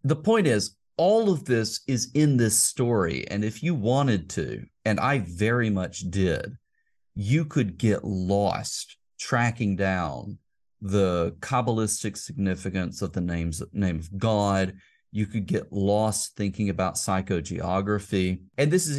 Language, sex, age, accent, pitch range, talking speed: English, male, 40-59, American, 95-120 Hz, 140 wpm